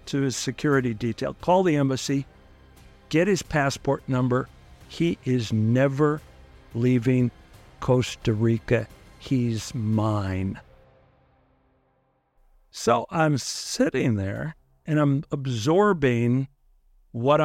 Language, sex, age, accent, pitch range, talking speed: English, male, 60-79, American, 120-165 Hz, 95 wpm